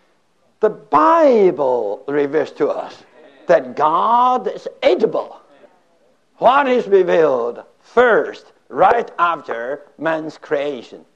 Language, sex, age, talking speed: English, male, 60-79, 90 wpm